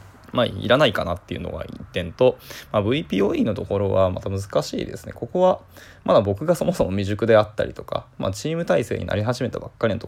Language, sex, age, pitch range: Japanese, male, 20-39, 95-125 Hz